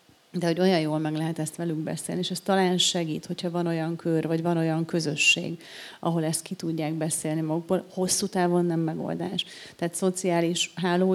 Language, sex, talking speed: Hungarian, female, 185 wpm